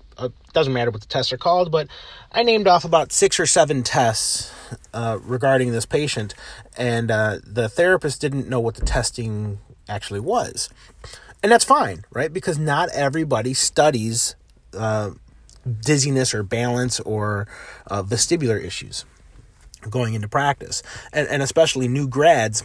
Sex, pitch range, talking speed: male, 105-135 Hz, 150 wpm